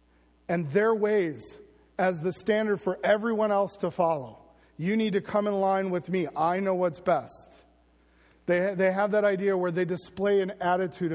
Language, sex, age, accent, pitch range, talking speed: English, male, 40-59, American, 150-185 Hz, 180 wpm